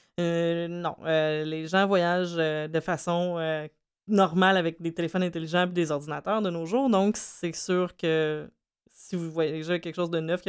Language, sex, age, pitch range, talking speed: French, female, 20-39, 155-185 Hz, 190 wpm